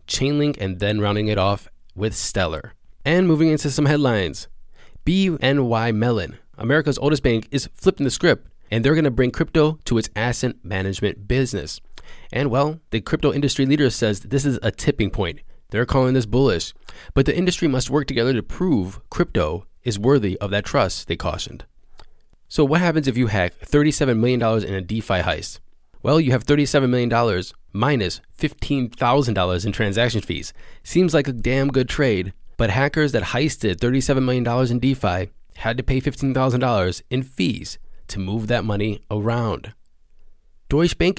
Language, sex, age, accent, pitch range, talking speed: English, male, 20-39, American, 105-140 Hz, 165 wpm